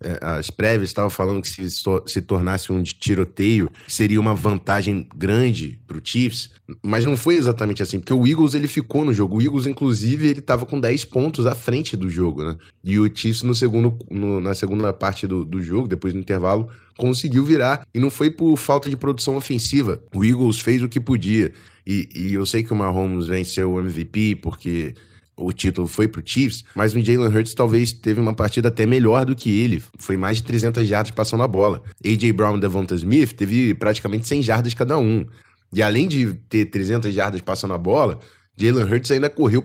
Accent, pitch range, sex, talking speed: Brazilian, 100-125 Hz, male, 205 wpm